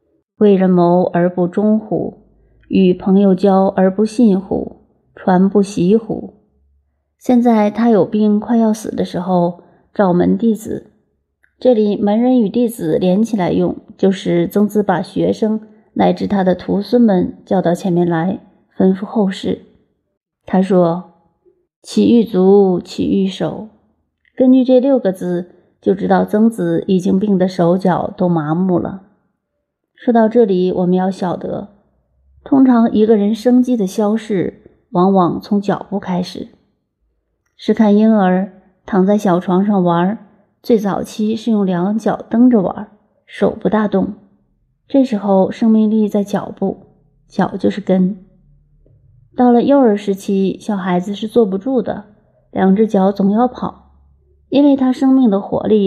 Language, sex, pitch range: Chinese, female, 185-220 Hz